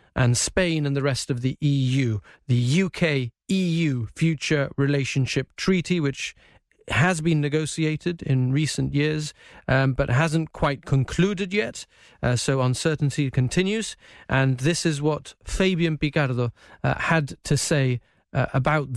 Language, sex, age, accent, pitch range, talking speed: English, male, 30-49, British, 130-155 Hz, 135 wpm